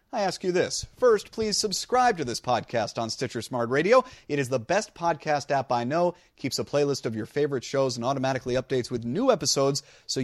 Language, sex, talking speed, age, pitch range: English, male, 210 wpm, 30-49, 120-180 Hz